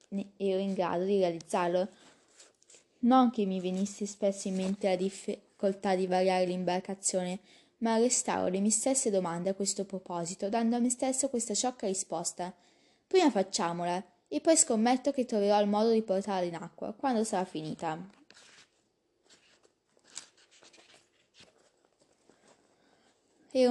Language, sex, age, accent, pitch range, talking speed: Italian, female, 20-39, native, 185-225 Hz, 125 wpm